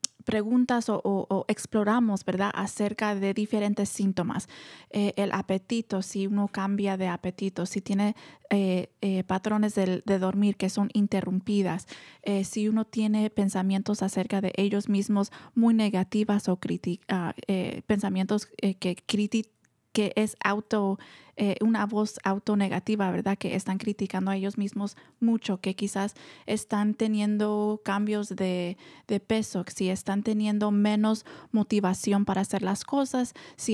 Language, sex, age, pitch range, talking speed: Spanish, female, 20-39, 195-215 Hz, 140 wpm